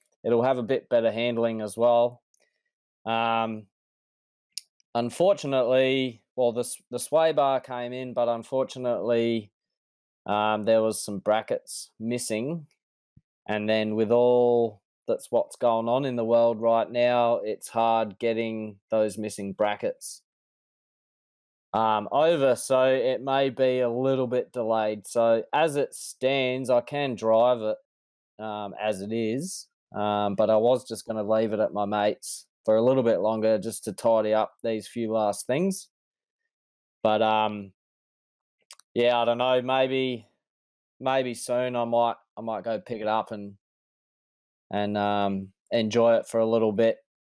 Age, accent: 20-39, Australian